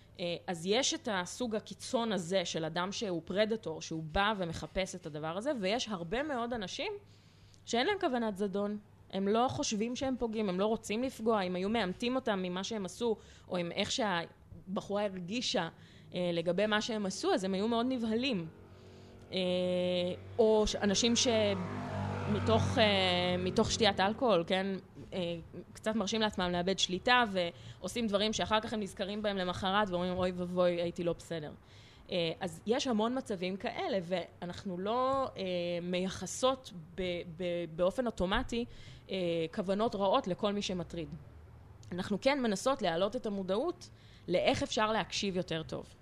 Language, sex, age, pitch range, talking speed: Hebrew, female, 20-39, 180-225 Hz, 140 wpm